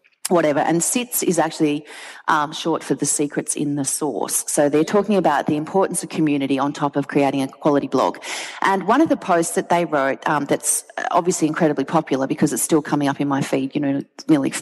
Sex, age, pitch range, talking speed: female, 30-49, 150-210 Hz, 215 wpm